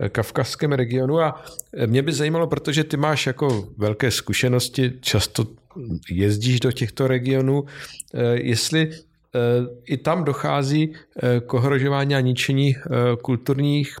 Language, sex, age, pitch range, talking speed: Czech, male, 50-69, 110-140 Hz, 105 wpm